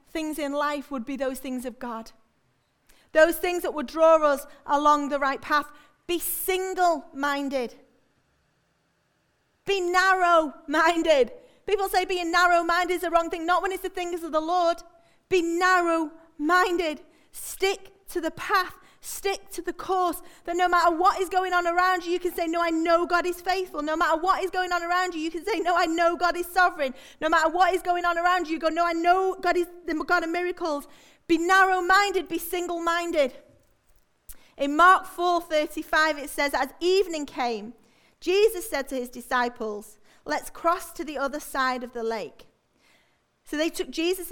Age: 30-49